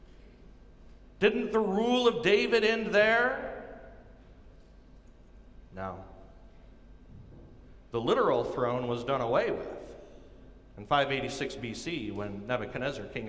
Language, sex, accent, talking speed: English, male, American, 95 wpm